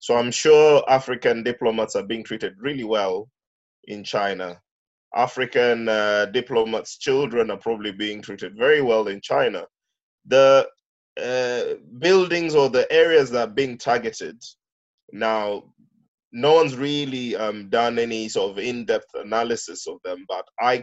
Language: English